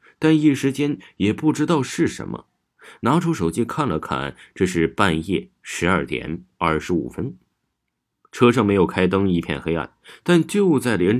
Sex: male